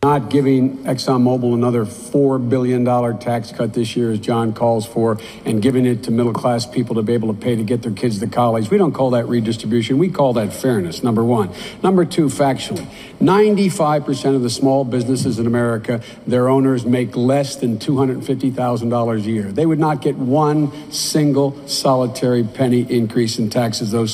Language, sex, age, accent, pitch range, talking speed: English, male, 60-79, American, 125-170 Hz, 180 wpm